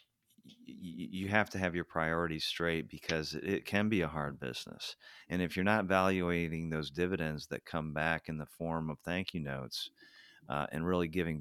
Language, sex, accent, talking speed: English, male, American, 185 wpm